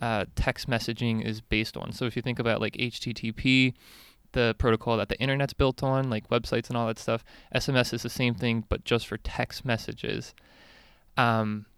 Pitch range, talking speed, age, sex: 110-120 Hz, 190 wpm, 20-39, male